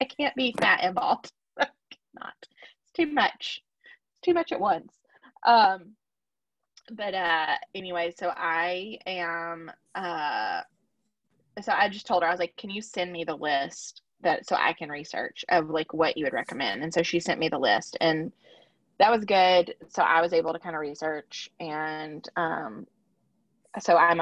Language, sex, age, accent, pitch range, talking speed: English, female, 20-39, American, 165-200 Hz, 175 wpm